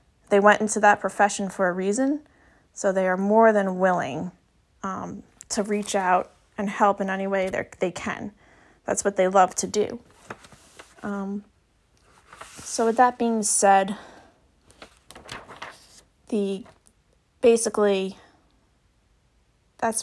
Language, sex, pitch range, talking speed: English, female, 195-215 Hz, 125 wpm